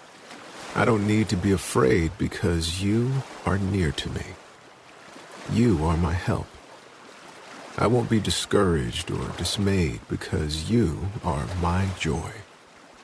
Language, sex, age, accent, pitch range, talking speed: English, male, 50-69, American, 85-110 Hz, 125 wpm